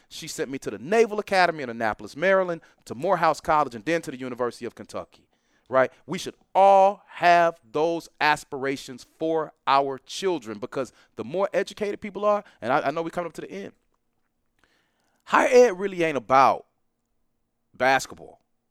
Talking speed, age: 165 wpm, 30-49